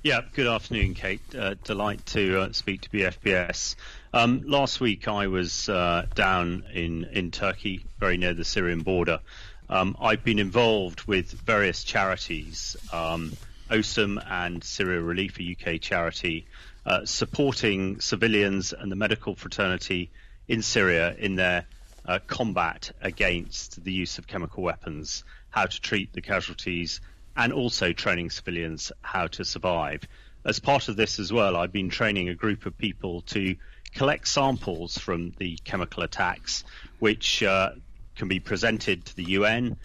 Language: English